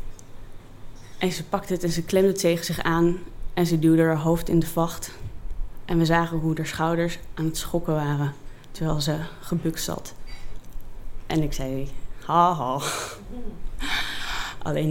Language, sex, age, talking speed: Dutch, female, 20-39, 155 wpm